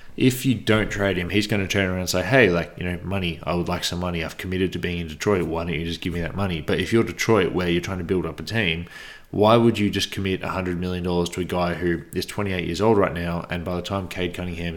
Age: 20-39